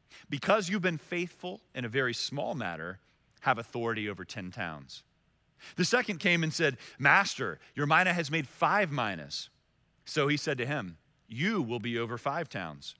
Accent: American